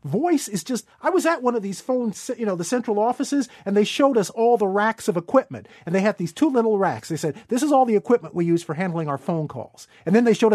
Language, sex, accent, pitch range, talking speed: English, male, American, 165-220 Hz, 280 wpm